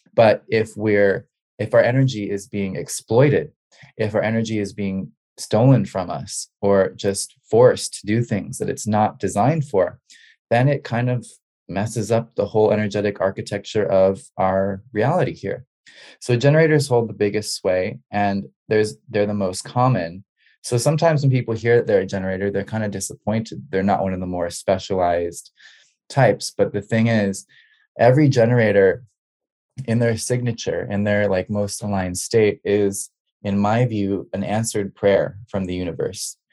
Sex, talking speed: male, 165 wpm